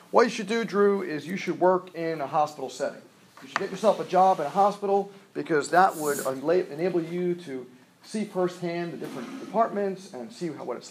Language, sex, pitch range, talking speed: English, male, 130-175 Hz, 210 wpm